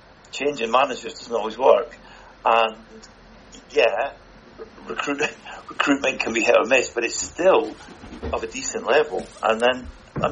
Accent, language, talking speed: British, English, 140 wpm